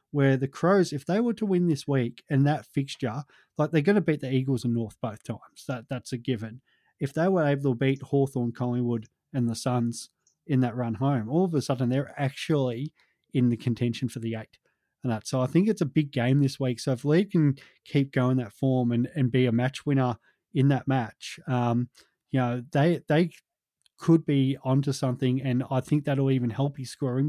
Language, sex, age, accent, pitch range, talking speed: English, male, 20-39, Australian, 125-140 Hz, 220 wpm